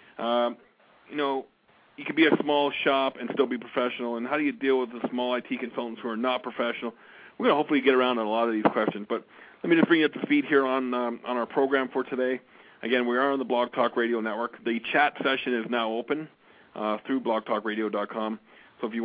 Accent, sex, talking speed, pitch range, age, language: American, male, 245 wpm, 115-130 Hz, 40-59, English